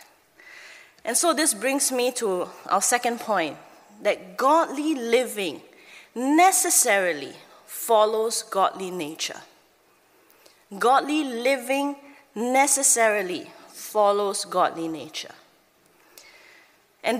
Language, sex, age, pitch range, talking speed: English, female, 30-49, 220-300 Hz, 80 wpm